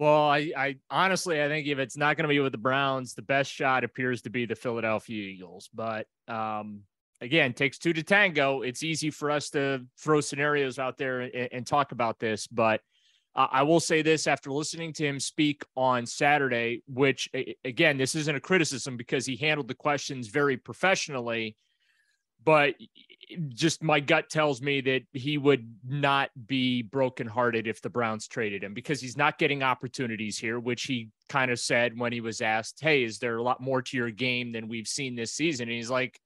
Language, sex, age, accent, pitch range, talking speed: English, male, 30-49, American, 125-150 Hz, 200 wpm